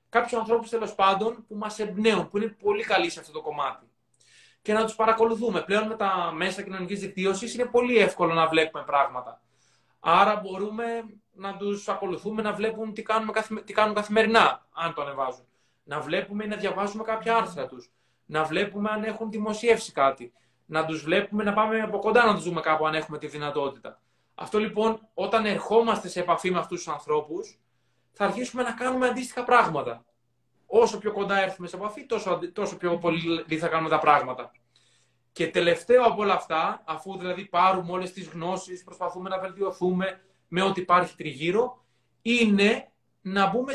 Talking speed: 175 wpm